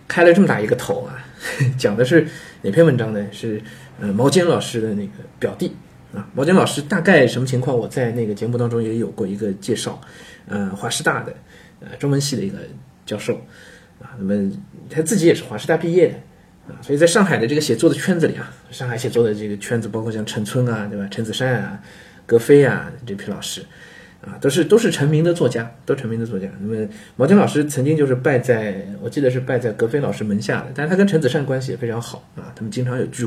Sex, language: male, Chinese